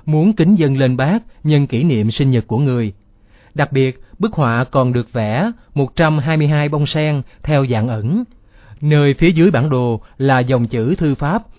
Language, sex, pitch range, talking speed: Vietnamese, male, 120-155 Hz, 180 wpm